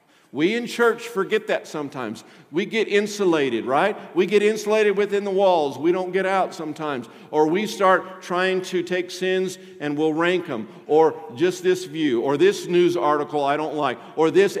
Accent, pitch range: American, 175-245 Hz